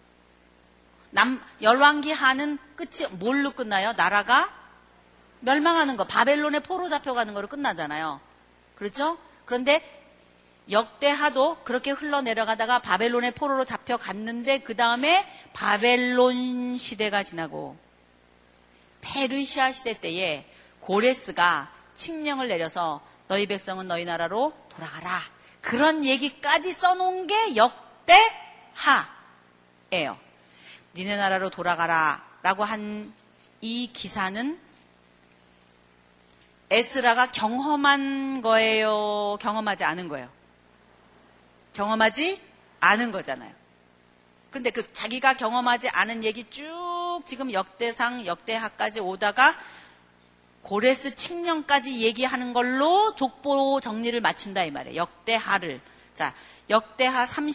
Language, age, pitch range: Korean, 40-59, 165-270 Hz